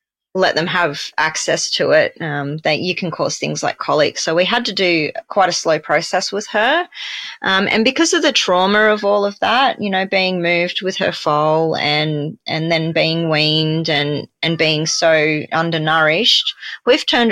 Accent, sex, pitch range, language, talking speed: Australian, female, 170-215 Hz, English, 185 wpm